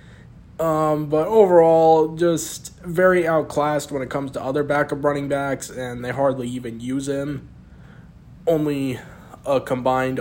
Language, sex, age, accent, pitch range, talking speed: English, male, 20-39, American, 120-145 Hz, 135 wpm